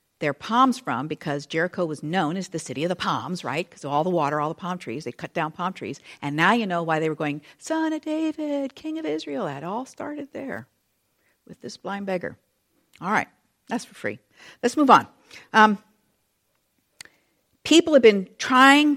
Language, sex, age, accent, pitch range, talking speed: English, female, 50-69, American, 175-260 Hz, 195 wpm